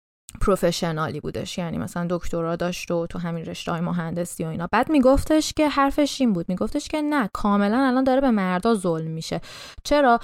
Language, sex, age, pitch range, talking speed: Persian, female, 20-39, 185-265 Hz, 175 wpm